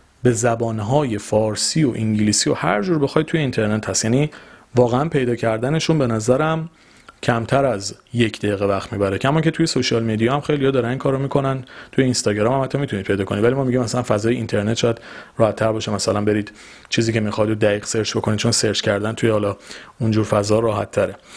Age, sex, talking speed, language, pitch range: 30-49, male, 190 wpm, Persian, 110-145 Hz